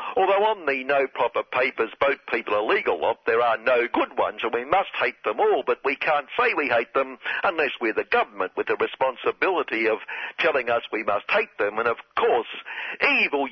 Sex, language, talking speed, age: male, English, 205 wpm, 60-79